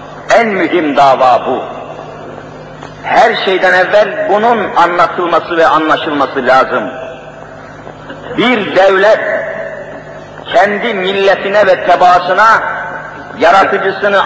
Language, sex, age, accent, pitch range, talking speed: Turkish, male, 50-69, native, 180-230 Hz, 80 wpm